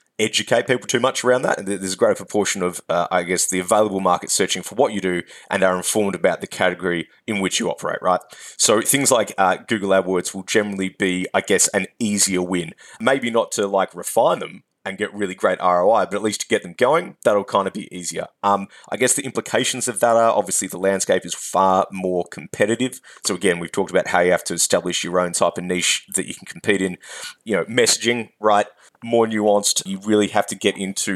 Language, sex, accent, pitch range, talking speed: English, male, Australian, 90-105 Hz, 225 wpm